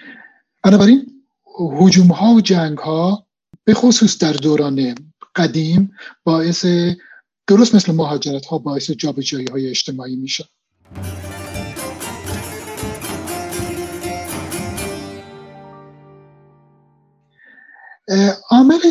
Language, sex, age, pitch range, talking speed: Persian, male, 50-69, 145-180 Hz, 70 wpm